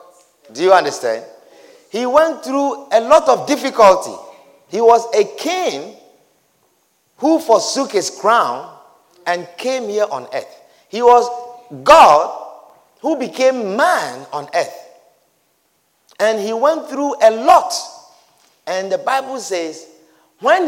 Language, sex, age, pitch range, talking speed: English, male, 50-69, 180-275 Hz, 120 wpm